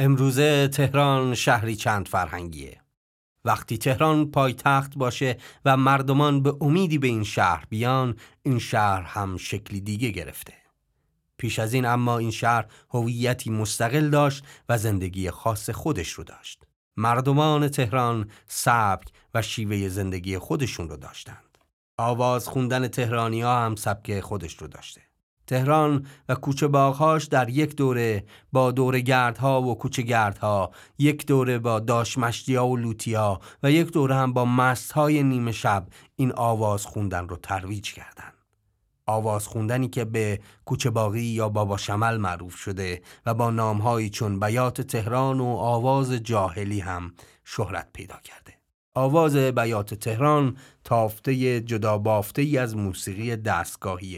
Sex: male